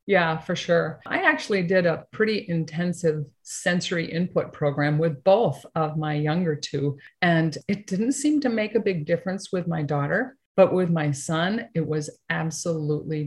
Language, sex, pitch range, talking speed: English, female, 150-185 Hz, 165 wpm